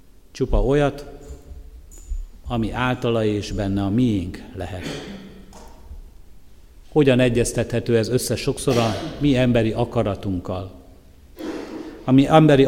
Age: 50-69